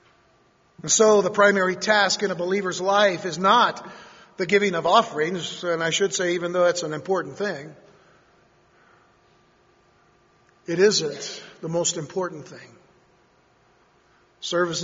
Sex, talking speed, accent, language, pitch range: male, 130 wpm, American, English, 170-210 Hz